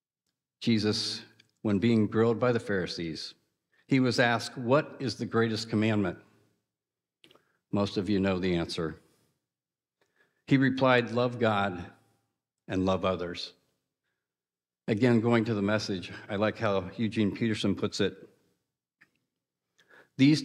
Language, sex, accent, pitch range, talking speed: English, male, American, 95-125 Hz, 120 wpm